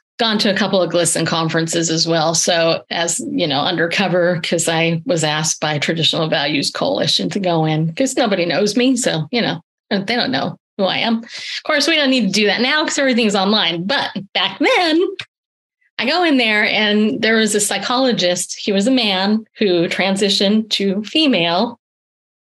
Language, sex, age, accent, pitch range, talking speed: English, female, 30-49, American, 175-235 Hz, 185 wpm